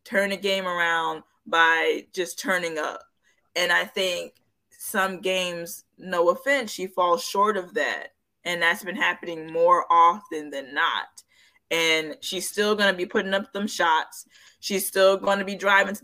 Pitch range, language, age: 175-215 Hz, English, 20-39